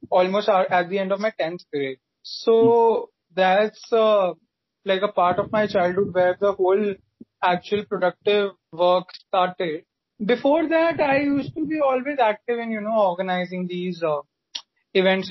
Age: 20-39